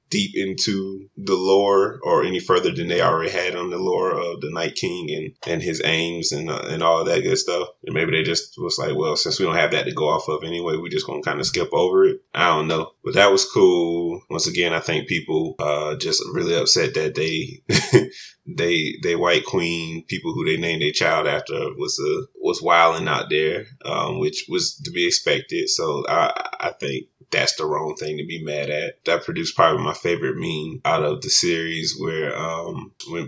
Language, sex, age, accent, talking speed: English, male, 20-39, American, 220 wpm